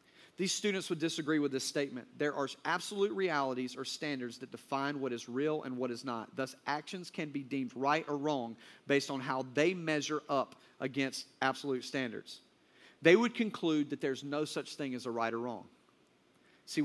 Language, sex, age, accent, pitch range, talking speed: English, male, 40-59, American, 135-190 Hz, 190 wpm